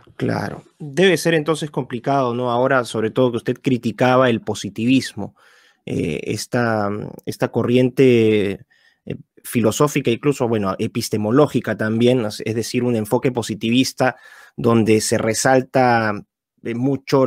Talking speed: 115 wpm